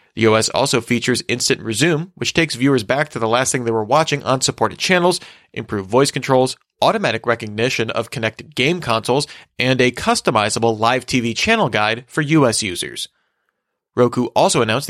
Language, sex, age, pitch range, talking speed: English, male, 30-49, 115-165 Hz, 170 wpm